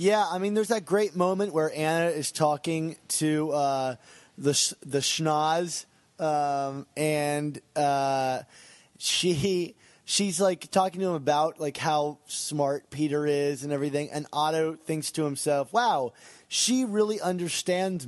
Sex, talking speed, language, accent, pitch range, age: male, 140 wpm, English, American, 140-175 Hz, 20-39